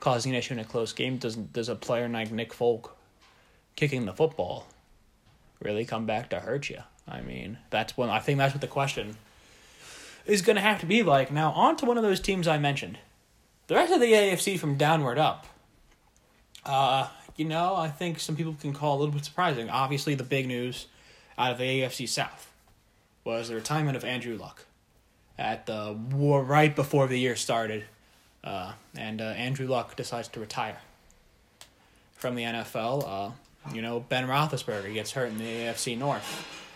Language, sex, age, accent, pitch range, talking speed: English, male, 20-39, American, 115-150 Hz, 190 wpm